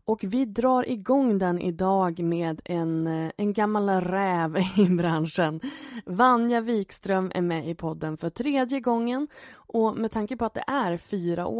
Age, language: 20-39, Swedish